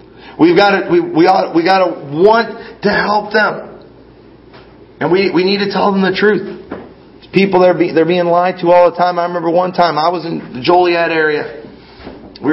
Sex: male